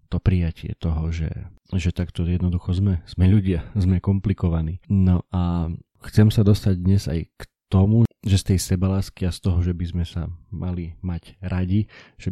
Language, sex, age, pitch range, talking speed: Slovak, male, 40-59, 90-100 Hz, 175 wpm